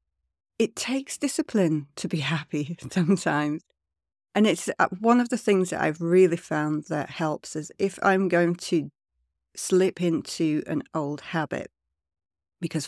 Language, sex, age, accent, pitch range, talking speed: English, female, 60-79, British, 145-185 Hz, 140 wpm